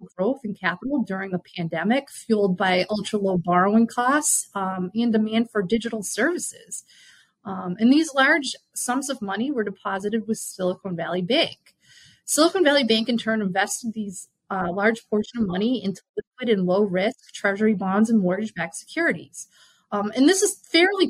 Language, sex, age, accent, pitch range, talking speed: English, female, 30-49, American, 195-255 Hz, 160 wpm